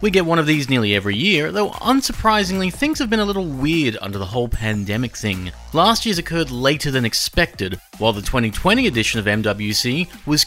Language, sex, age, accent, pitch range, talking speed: English, male, 30-49, Australian, 115-175 Hz, 195 wpm